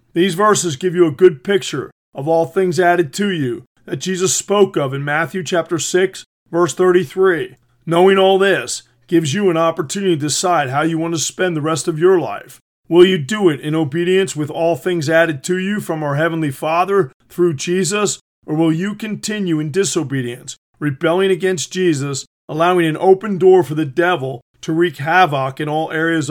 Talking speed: 185 wpm